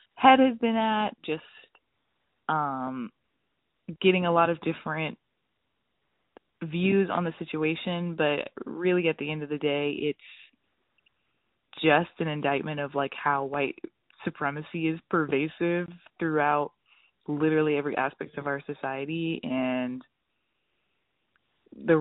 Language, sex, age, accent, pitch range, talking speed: English, female, 20-39, American, 140-165 Hz, 115 wpm